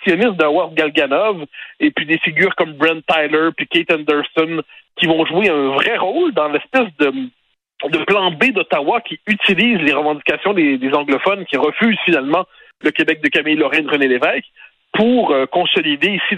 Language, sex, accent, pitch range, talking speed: French, male, French, 150-225 Hz, 165 wpm